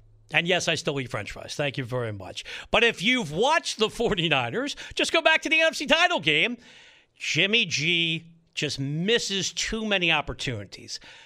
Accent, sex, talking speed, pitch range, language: American, male, 170 wpm, 150-225 Hz, English